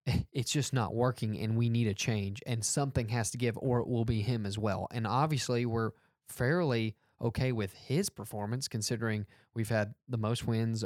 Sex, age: male, 20-39